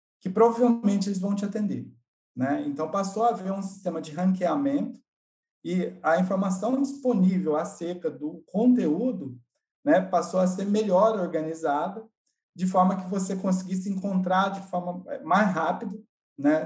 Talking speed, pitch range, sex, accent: 140 wpm, 150-210 Hz, male, Brazilian